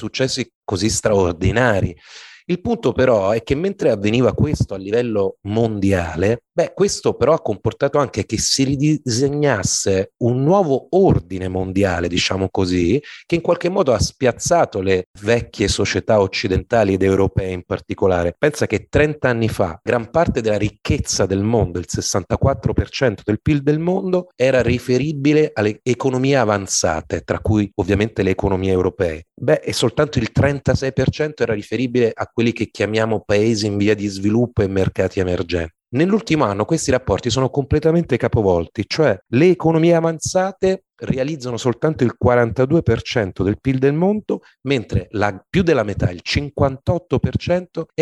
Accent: native